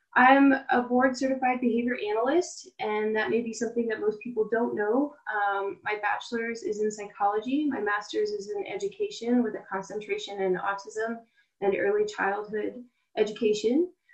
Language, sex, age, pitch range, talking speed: English, female, 20-39, 200-255 Hz, 155 wpm